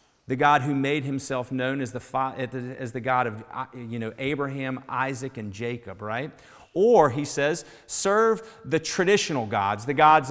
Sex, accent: male, American